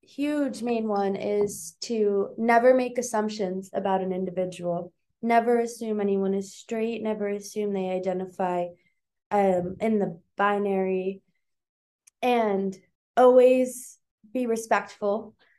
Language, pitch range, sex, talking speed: English, 190-240 Hz, female, 110 wpm